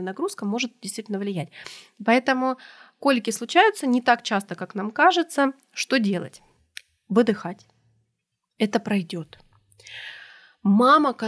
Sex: female